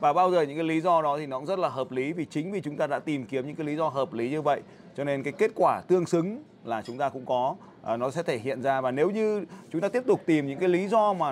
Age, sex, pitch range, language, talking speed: 20-39, male, 150-200 Hz, Vietnamese, 325 wpm